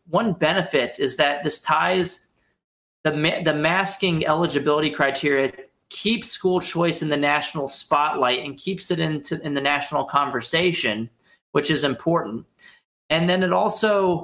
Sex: male